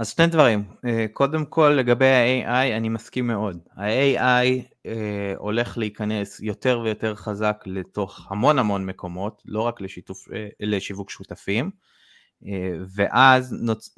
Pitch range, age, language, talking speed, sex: 100-120 Hz, 20-39, Hebrew, 130 wpm, male